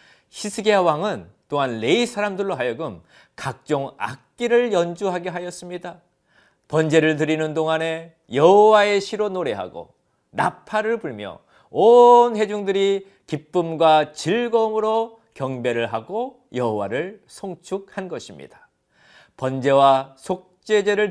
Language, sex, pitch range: Korean, male, 145-210 Hz